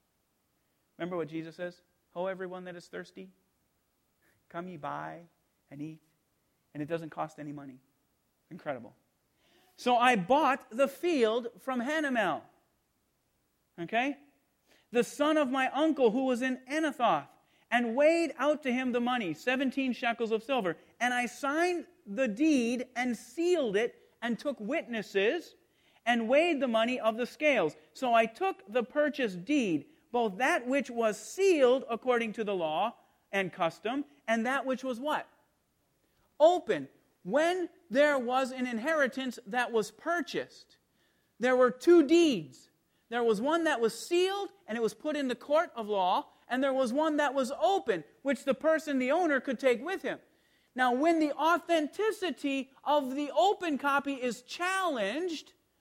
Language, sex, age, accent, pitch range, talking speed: English, male, 40-59, American, 225-305 Hz, 155 wpm